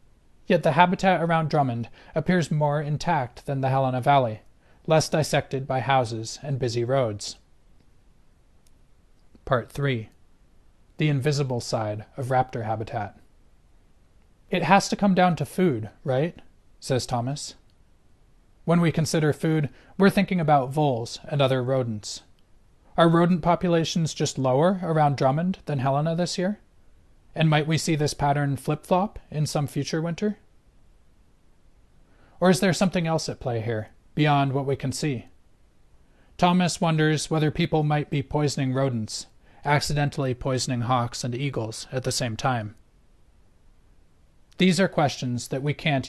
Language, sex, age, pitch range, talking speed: English, male, 40-59, 115-160 Hz, 140 wpm